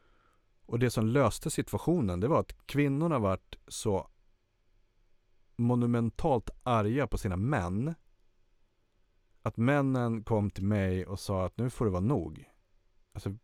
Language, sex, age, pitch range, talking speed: Swedish, male, 30-49, 95-120 Hz, 140 wpm